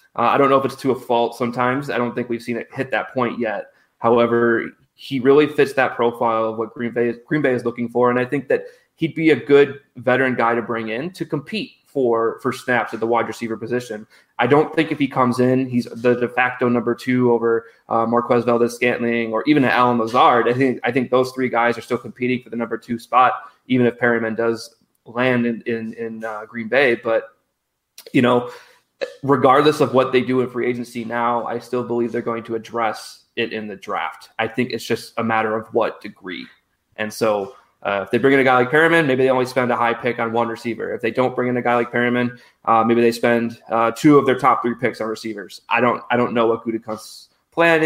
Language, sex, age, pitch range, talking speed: English, male, 20-39, 115-125 Hz, 240 wpm